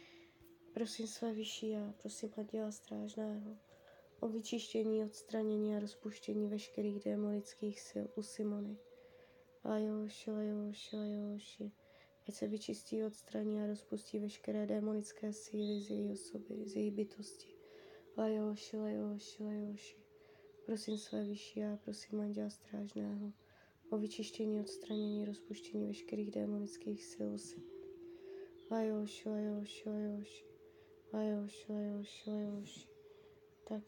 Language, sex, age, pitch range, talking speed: Czech, female, 20-39, 200-335 Hz, 110 wpm